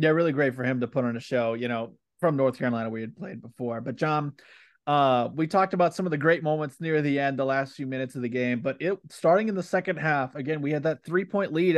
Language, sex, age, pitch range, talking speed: English, male, 20-39, 130-160 Hz, 270 wpm